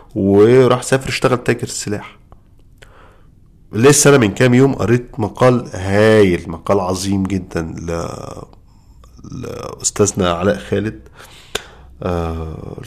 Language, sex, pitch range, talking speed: Arabic, male, 90-115 Hz, 100 wpm